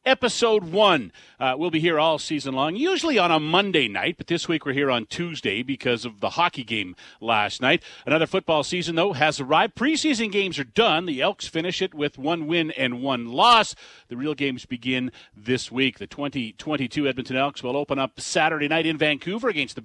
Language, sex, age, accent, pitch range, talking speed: English, male, 40-59, American, 135-190 Hz, 205 wpm